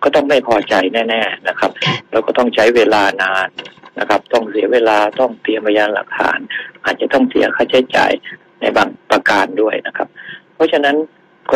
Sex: male